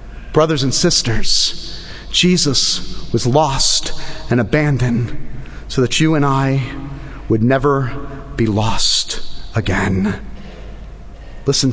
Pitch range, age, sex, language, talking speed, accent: 130-200 Hz, 30-49, male, English, 95 wpm, American